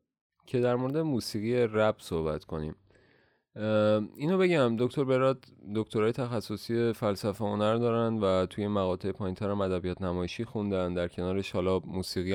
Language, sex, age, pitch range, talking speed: Persian, male, 30-49, 95-120 Hz, 130 wpm